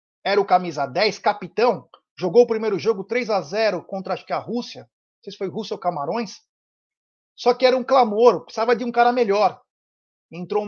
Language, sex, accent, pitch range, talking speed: Portuguese, male, Brazilian, 180-225 Hz, 190 wpm